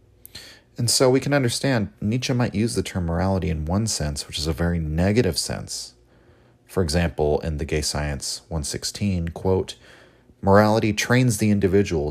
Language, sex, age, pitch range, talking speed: English, male, 30-49, 80-110 Hz, 160 wpm